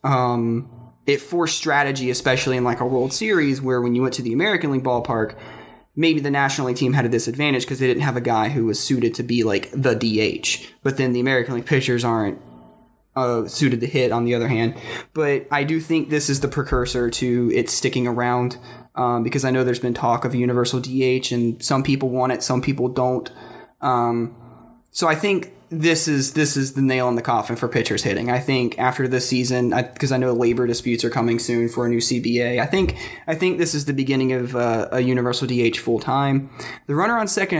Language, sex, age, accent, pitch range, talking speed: English, male, 20-39, American, 120-145 Hz, 225 wpm